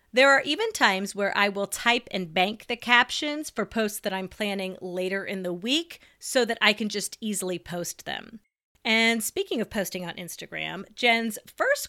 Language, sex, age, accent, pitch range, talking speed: English, female, 30-49, American, 190-240 Hz, 185 wpm